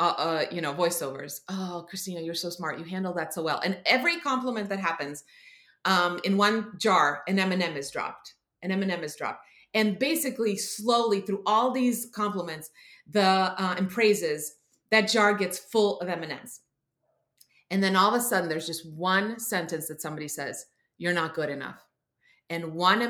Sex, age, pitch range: female, 30-49, 165-205 Hz